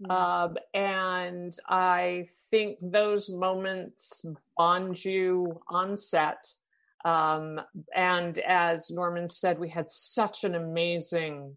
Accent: American